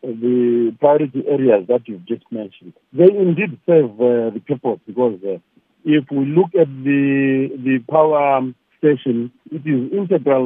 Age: 50-69